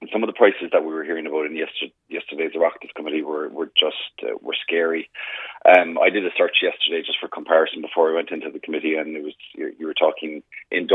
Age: 30-49